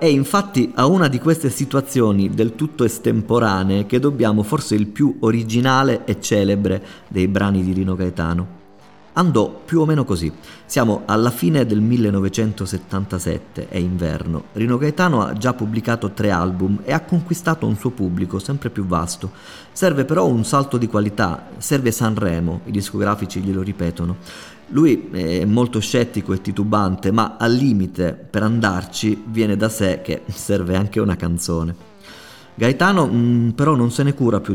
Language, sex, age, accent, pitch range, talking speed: Italian, male, 30-49, native, 95-125 Hz, 155 wpm